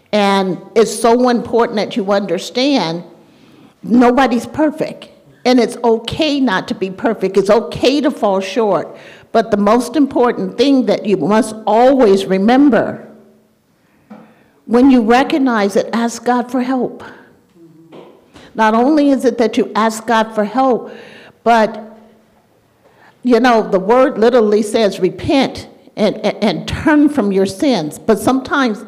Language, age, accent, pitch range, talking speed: English, 50-69, American, 210-260 Hz, 135 wpm